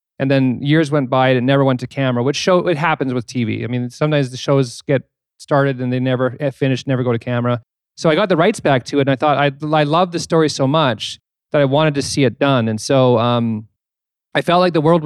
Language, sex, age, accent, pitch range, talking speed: English, male, 40-59, American, 125-150 Hz, 255 wpm